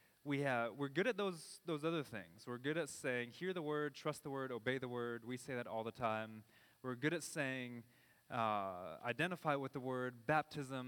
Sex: male